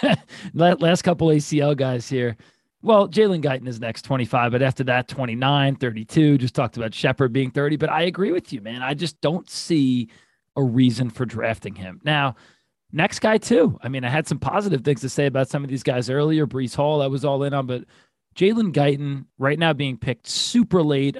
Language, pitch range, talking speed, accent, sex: English, 125-155 Hz, 205 wpm, American, male